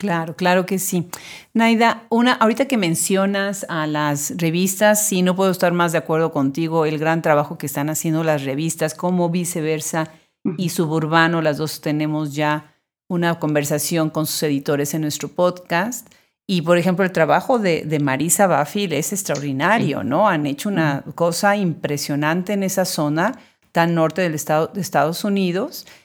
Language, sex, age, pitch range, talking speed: Spanish, female, 40-59, 155-200 Hz, 160 wpm